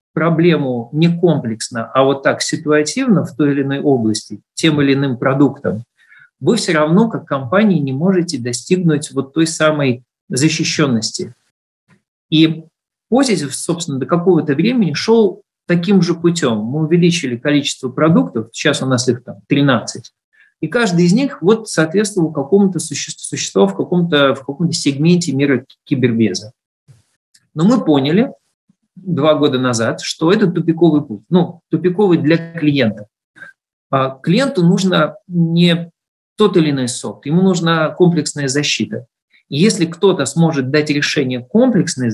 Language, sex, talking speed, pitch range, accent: Russian, male, 140 wpm, 130-175 Hz, native